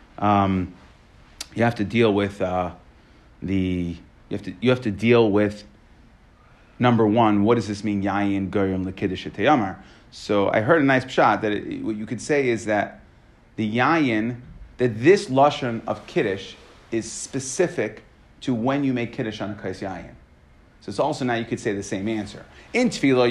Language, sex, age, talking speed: English, male, 40-59, 170 wpm